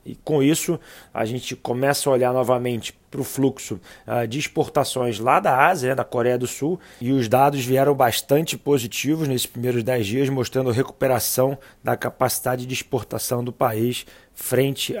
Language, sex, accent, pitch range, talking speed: Portuguese, male, Brazilian, 120-135 Hz, 170 wpm